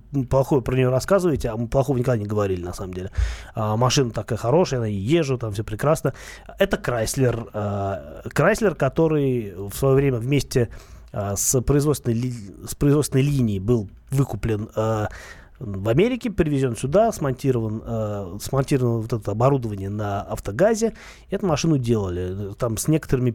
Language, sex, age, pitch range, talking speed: Russian, male, 30-49, 110-150 Hz, 145 wpm